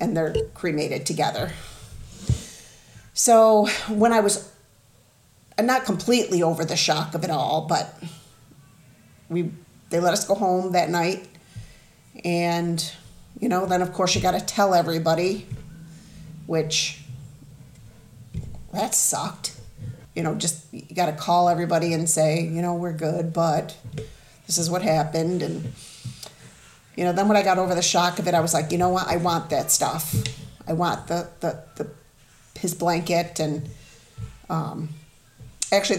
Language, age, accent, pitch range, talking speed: English, 40-59, American, 150-180 Hz, 150 wpm